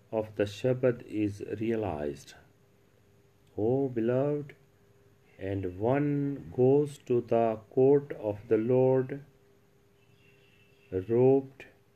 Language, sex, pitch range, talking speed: Punjabi, male, 100-135 Hz, 85 wpm